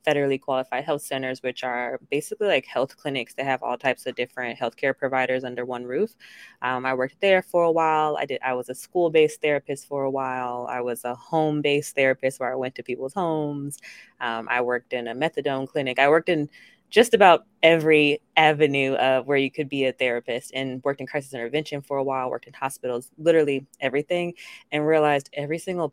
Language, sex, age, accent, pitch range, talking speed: English, female, 20-39, American, 125-150 Hz, 205 wpm